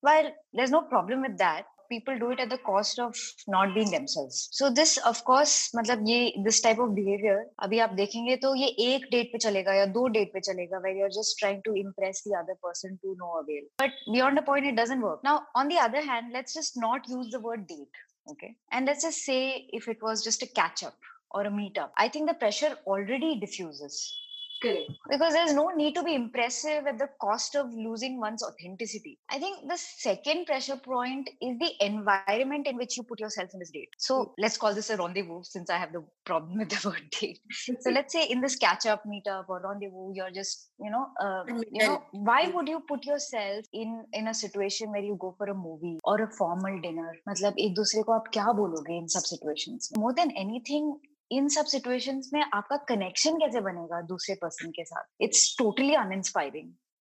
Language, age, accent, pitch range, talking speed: English, 20-39, Indian, 195-275 Hz, 195 wpm